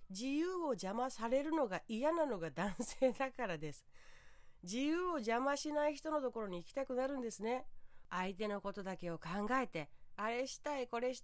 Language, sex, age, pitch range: Japanese, female, 40-59, 170-280 Hz